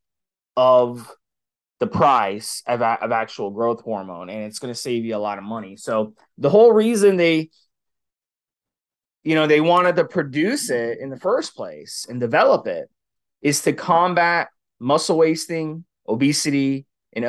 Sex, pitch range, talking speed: male, 125-165 Hz, 155 wpm